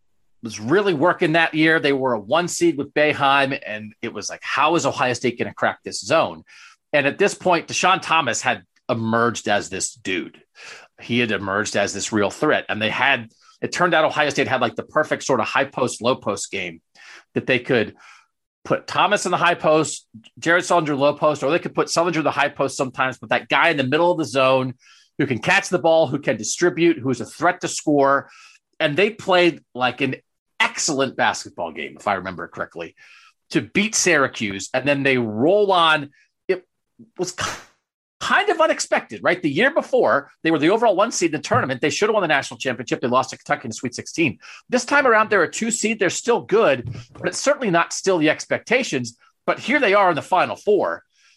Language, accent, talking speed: English, American, 220 wpm